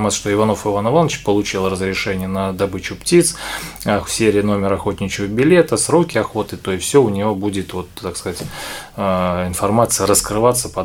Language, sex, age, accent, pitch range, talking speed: Russian, male, 20-39, native, 100-110 Hz, 140 wpm